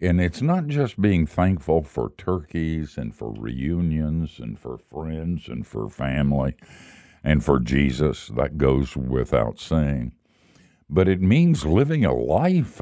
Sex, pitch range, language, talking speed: male, 75-105 Hz, English, 140 wpm